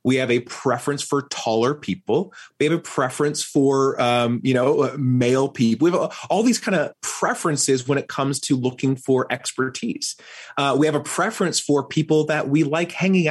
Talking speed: 190 wpm